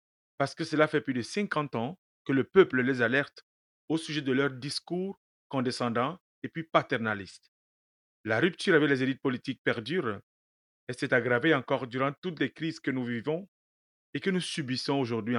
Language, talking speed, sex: French, 175 wpm, male